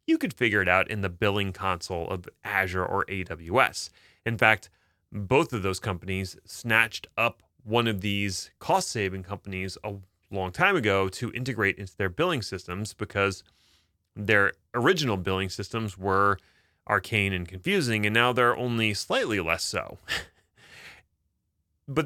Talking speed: 145 wpm